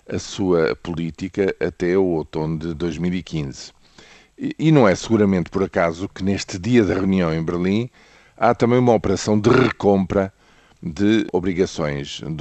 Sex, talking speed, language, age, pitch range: male, 140 wpm, Portuguese, 50-69, 85-110 Hz